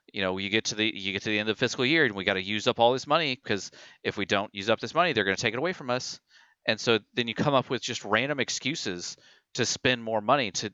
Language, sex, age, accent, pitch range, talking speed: English, male, 40-59, American, 100-125 Hz, 305 wpm